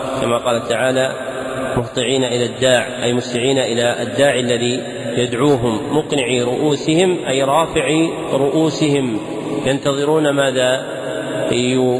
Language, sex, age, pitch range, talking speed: Arabic, male, 40-59, 130-150 Hz, 90 wpm